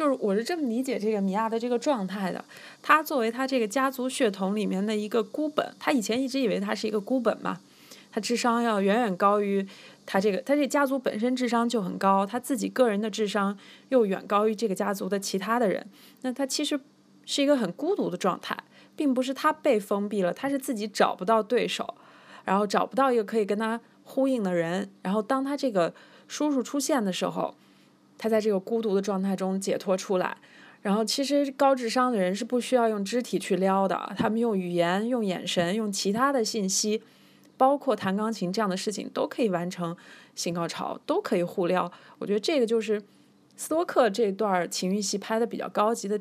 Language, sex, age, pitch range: Chinese, female, 20-39, 195-255 Hz